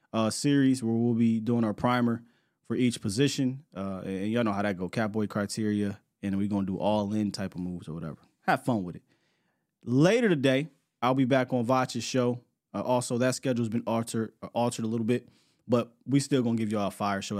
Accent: American